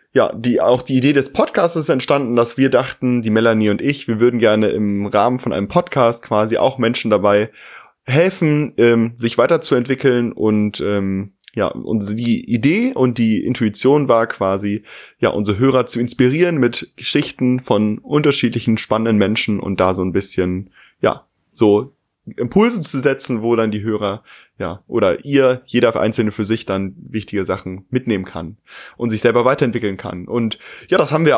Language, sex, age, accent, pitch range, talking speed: German, male, 20-39, German, 105-130 Hz, 170 wpm